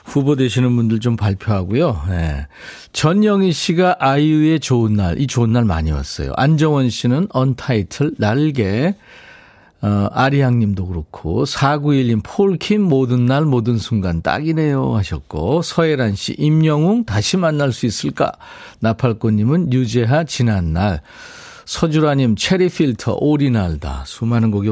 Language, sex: Korean, male